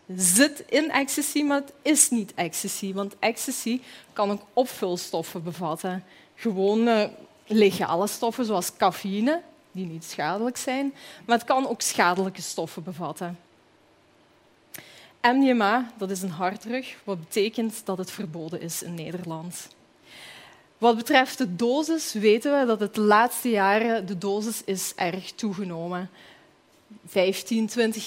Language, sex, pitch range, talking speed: Dutch, female, 185-235 Hz, 135 wpm